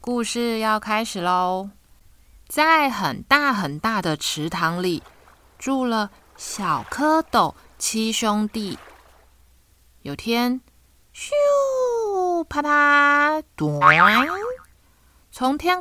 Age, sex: 20-39, female